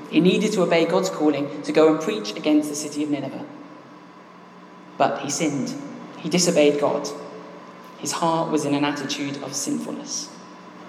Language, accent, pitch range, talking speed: English, British, 145-170 Hz, 160 wpm